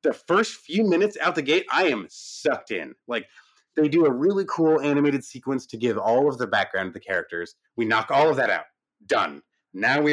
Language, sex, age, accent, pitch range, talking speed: English, male, 30-49, American, 120-155 Hz, 215 wpm